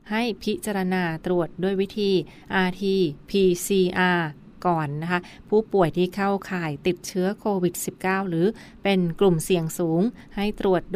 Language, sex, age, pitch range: Thai, female, 30-49, 175-200 Hz